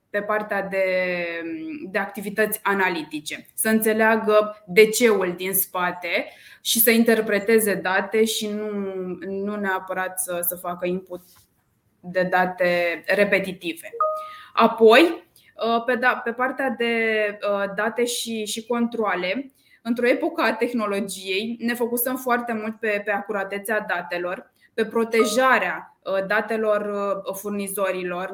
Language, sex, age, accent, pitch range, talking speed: Romanian, female, 20-39, native, 180-225 Hz, 110 wpm